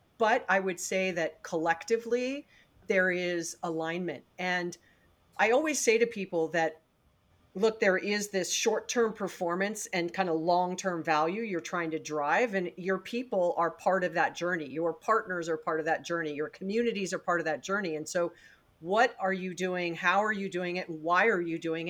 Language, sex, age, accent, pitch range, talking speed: English, female, 40-59, American, 170-220 Hz, 190 wpm